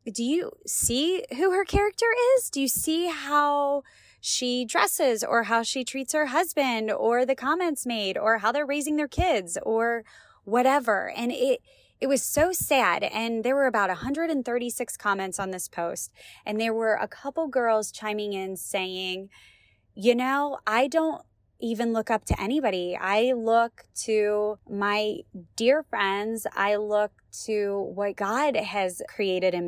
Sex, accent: female, American